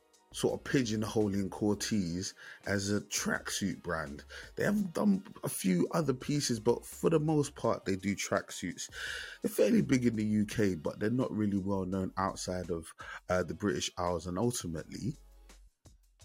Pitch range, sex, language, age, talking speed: 90-110 Hz, male, English, 20-39, 160 wpm